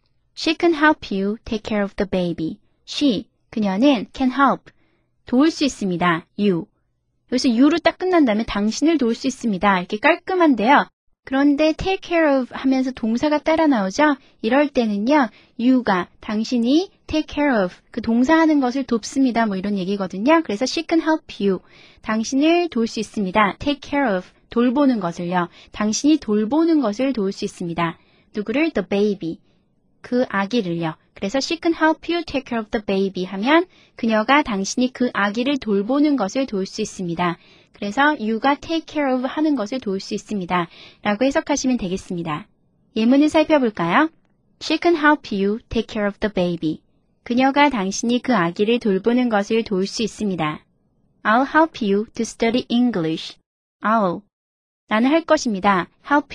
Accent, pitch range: native, 200-285 Hz